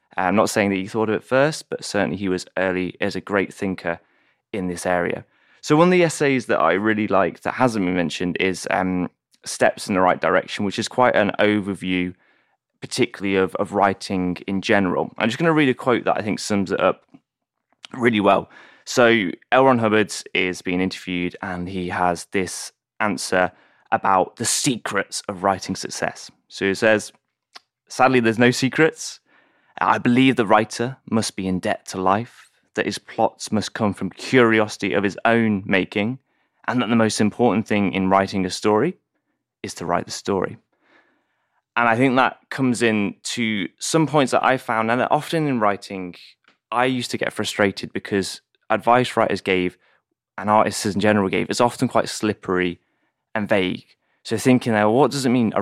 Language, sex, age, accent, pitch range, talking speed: English, male, 20-39, British, 95-120 Hz, 185 wpm